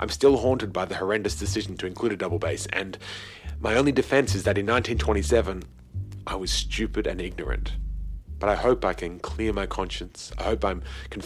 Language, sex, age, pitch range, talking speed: English, male, 40-59, 90-125 Hz, 195 wpm